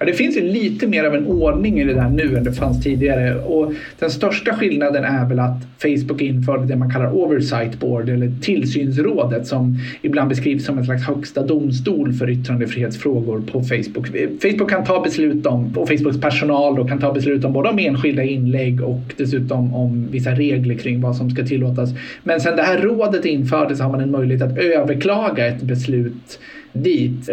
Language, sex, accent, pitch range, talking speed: Swedish, male, native, 125-150 Hz, 190 wpm